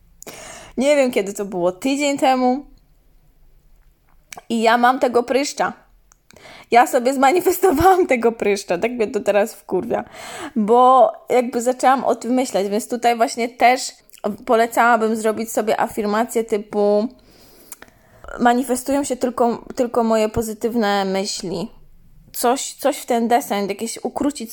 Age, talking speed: 20-39, 125 wpm